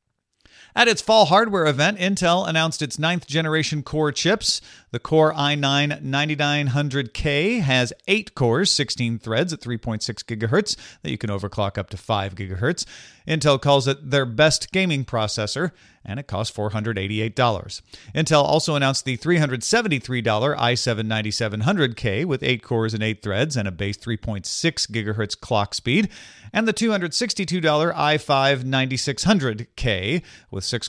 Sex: male